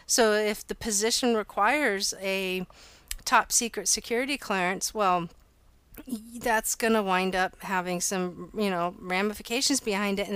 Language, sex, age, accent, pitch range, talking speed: English, female, 40-59, American, 190-230 Hz, 140 wpm